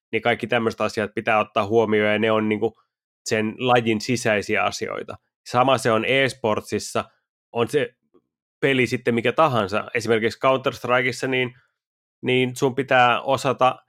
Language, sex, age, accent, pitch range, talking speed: Finnish, male, 30-49, native, 110-125 Hz, 140 wpm